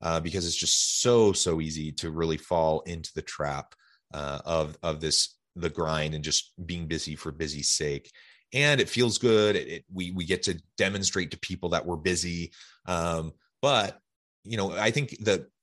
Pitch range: 80-100 Hz